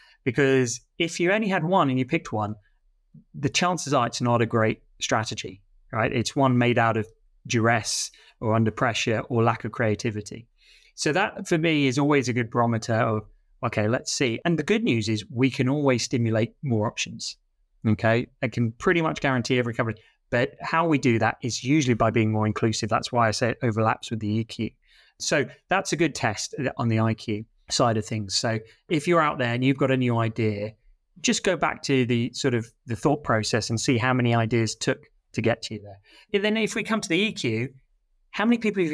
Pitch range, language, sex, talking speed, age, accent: 110-150 Hz, English, male, 215 wpm, 30-49, British